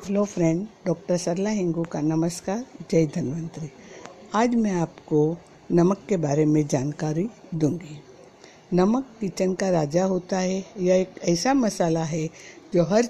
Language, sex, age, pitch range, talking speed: Hindi, female, 60-79, 160-190 Hz, 140 wpm